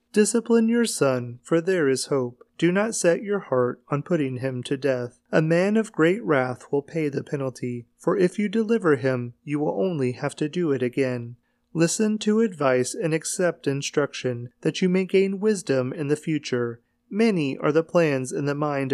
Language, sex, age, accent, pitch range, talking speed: English, male, 30-49, American, 130-175 Hz, 190 wpm